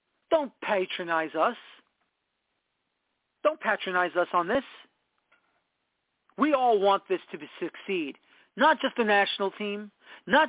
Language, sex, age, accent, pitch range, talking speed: English, male, 40-59, American, 185-245 Hz, 120 wpm